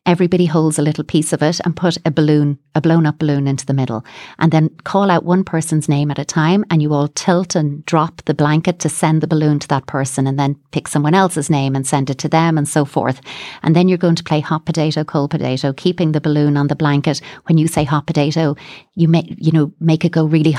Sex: female